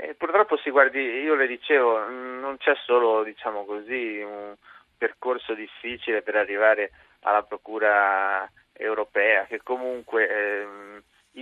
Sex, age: male, 30-49